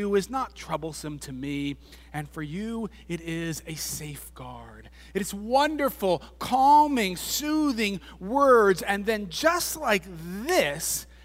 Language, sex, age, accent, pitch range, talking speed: English, male, 40-59, American, 170-245 Hz, 115 wpm